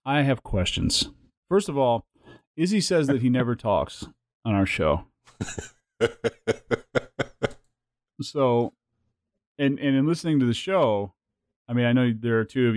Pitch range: 105-130 Hz